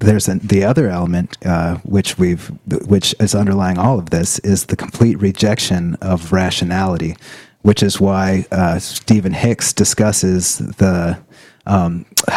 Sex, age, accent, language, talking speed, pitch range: male, 30-49, American, English, 140 wpm, 95-105 Hz